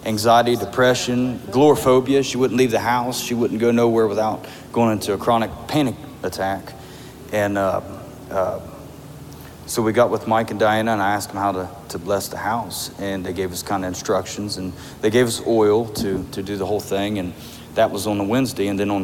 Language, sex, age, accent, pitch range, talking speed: English, male, 40-59, American, 95-120 Hz, 210 wpm